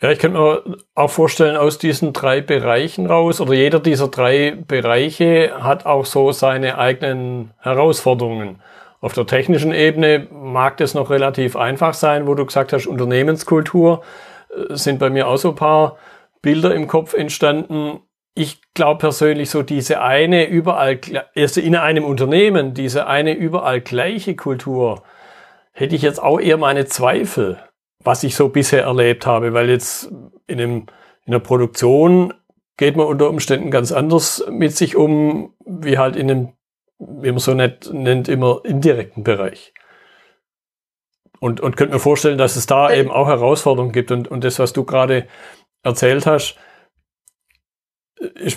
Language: German